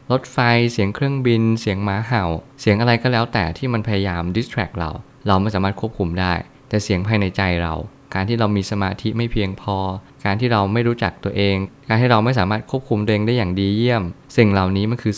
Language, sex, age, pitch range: Thai, male, 20-39, 95-120 Hz